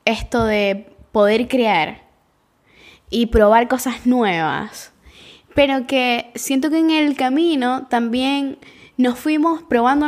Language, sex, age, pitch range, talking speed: Spanish, female, 10-29, 210-250 Hz, 115 wpm